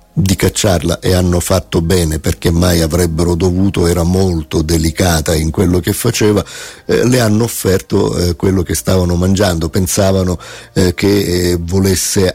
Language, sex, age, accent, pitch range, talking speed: Italian, male, 50-69, native, 90-100 Hz, 150 wpm